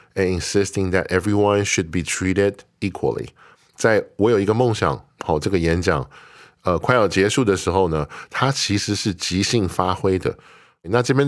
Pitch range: 85-110 Hz